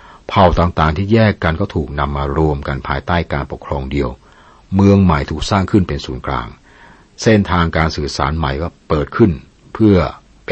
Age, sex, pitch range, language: 60-79, male, 70-90 Hz, Thai